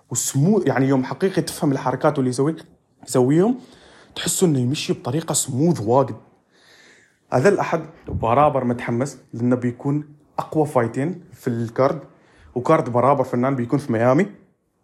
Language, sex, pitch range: Arabic, male, 130-165 Hz